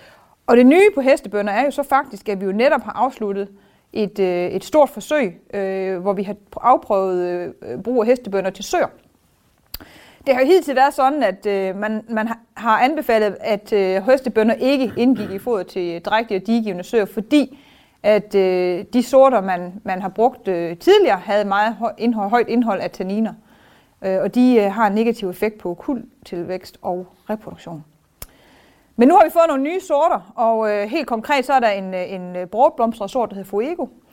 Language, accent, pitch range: Danish, native, 200-255 Hz